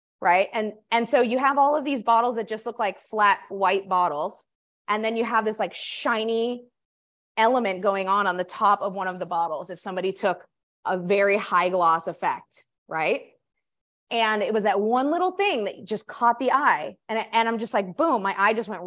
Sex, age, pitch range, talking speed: female, 20-39, 200-250 Hz, 210 wpm